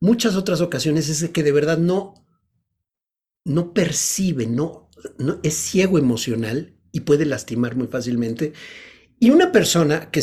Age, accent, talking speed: 50-69, Mexican, 130 wpm